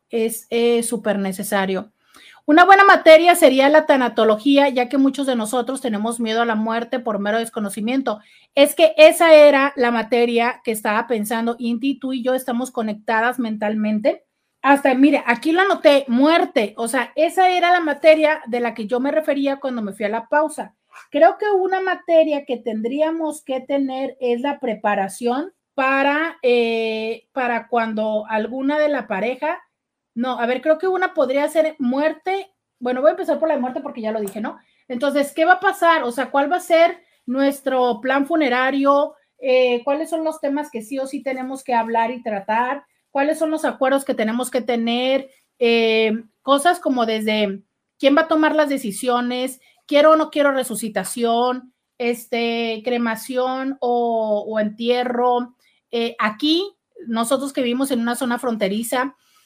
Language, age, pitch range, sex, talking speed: Spanish, 40-59, 230-295 Hz, female, 170 wpm